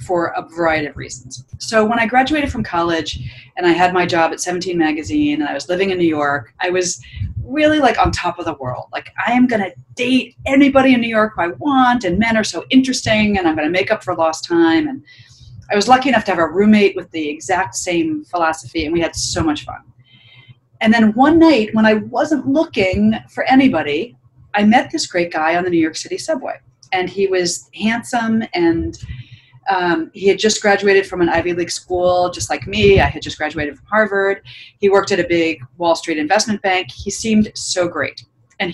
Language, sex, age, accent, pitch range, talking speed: English, female, 30-49, American, 155-220 Hz, 215 wpm